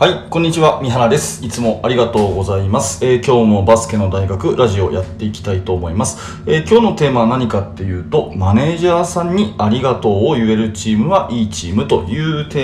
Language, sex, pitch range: Japanese, male, 100-145 Hz